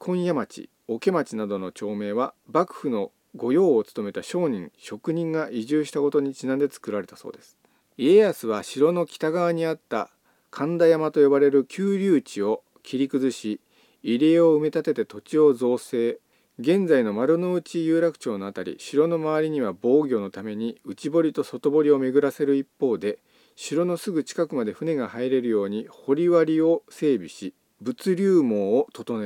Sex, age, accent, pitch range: male, 40-59, native, 115-170 Hz